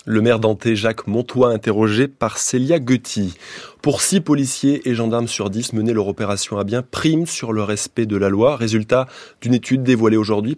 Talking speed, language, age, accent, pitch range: 185 wpm, French, 20-39, French, 110-140 Hz